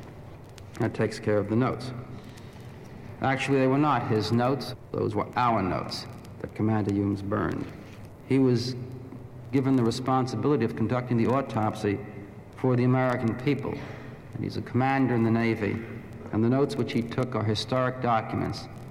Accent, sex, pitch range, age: American, male, 110-130 Hz, 60-79